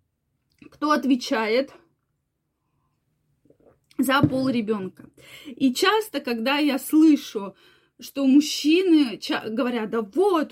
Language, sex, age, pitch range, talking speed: Russian, female, 20-39, 230-300 Hz, 85 wpm